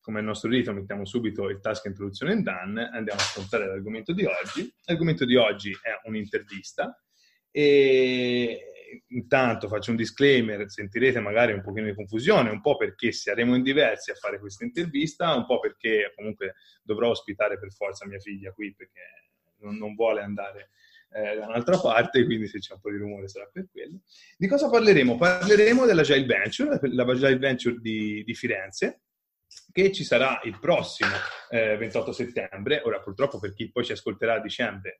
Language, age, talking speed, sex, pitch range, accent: Italian, 20-39, 180 wpm, male, 105-145 Hz, native